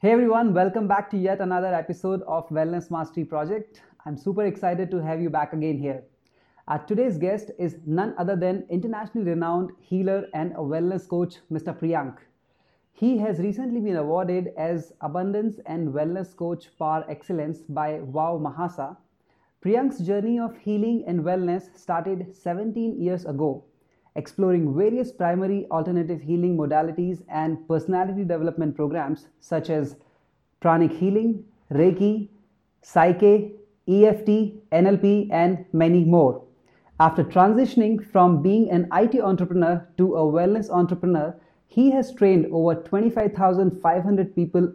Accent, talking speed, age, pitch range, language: Indian, 135 wpm, 30-49, 160-200 Hz, English